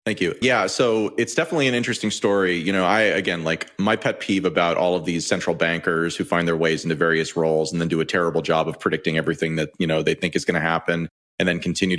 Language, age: English, 30-49